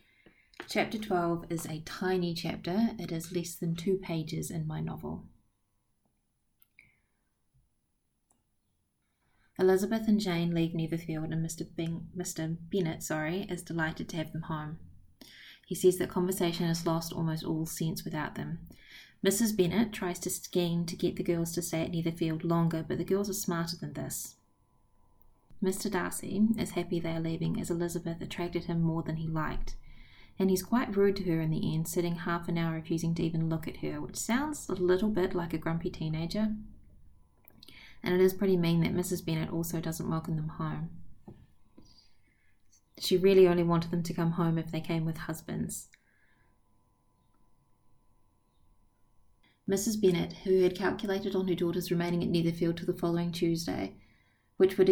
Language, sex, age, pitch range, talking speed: English, female, 20-39, 160-180 Hz, 160 wpm